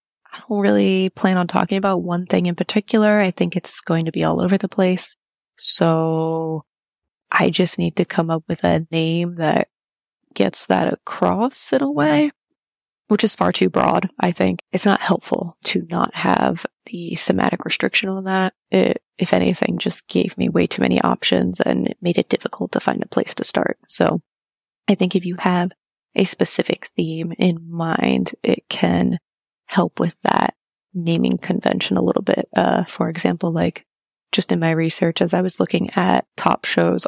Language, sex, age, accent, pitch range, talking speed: English, female, 20-39, American, 165-190 Hz, 180 wpm